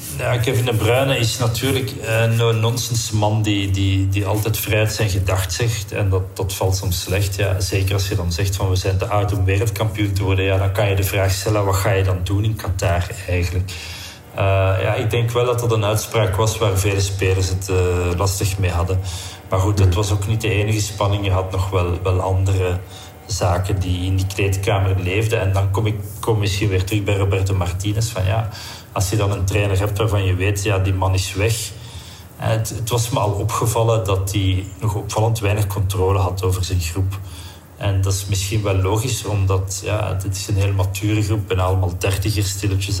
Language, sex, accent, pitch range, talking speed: Dutch, male, Dutch, 95-110 Hz, 210 wpm